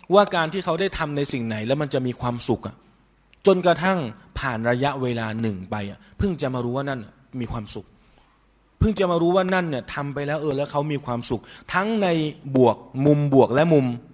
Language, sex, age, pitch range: Thai, male, 20-39, 120-155 Hz